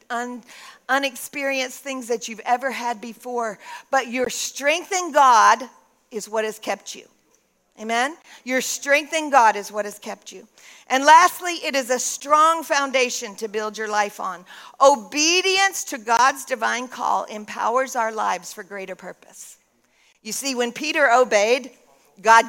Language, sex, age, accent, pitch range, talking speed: English, female, 50-69, American, 220-275 Hz, 150 wpm